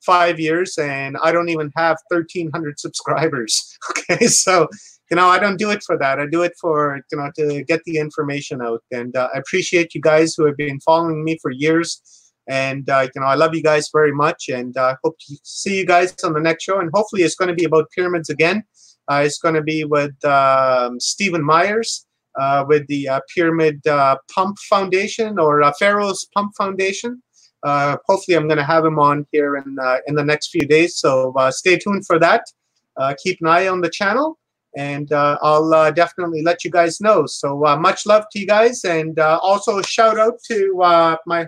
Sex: male